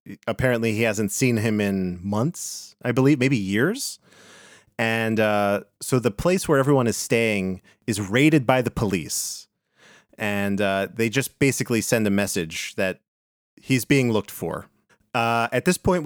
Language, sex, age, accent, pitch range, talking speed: English, male, 30-49, American, 105-135 Hz, 155 wpm